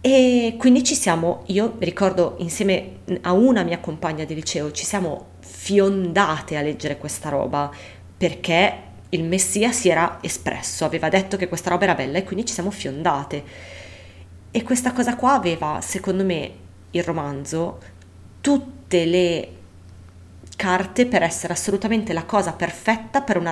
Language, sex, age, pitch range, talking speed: Italian, female, 30-49, 145-205 Hz, 150 wpm